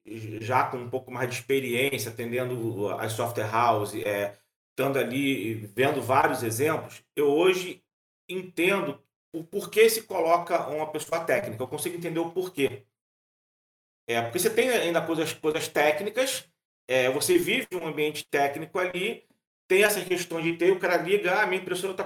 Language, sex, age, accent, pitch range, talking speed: Portuguese, male, 40-59, Brazilian, 135-195 Hz, 165 wpm